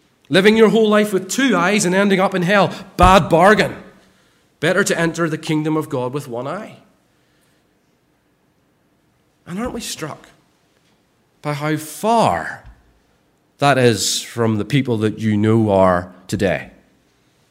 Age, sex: 40-59, male